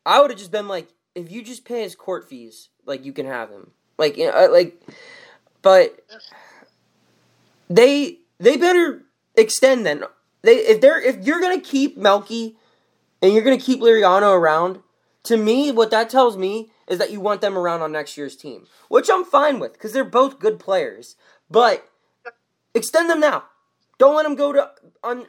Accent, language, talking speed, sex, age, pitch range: American, English, 185 wpm, male, 20-39, 200-290 Hz